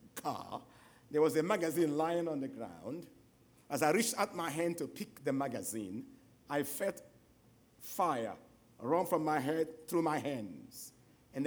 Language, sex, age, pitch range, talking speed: English, male, 50-69, 130-170 Hz, 155 wpm